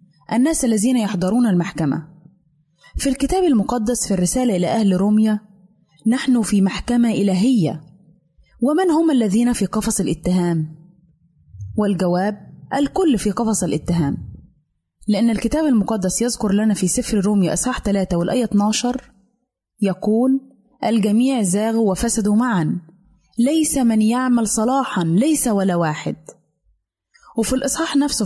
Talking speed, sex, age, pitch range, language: 115 wpm, female, 20-39, 185-245 Hz, Arabic